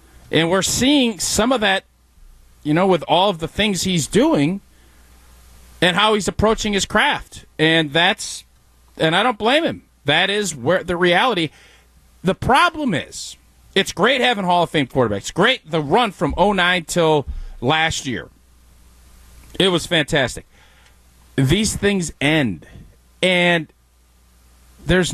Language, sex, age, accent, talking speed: English, male, 40-59, American, 140 wpm